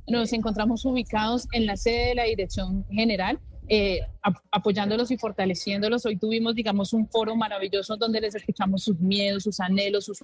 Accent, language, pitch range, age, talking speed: Colombian, Spanish, 200-225 Hz, 30-49, 170 wpm